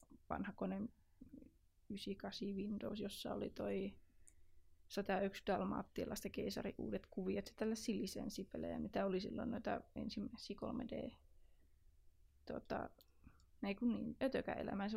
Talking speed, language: 110 wpm, Finnish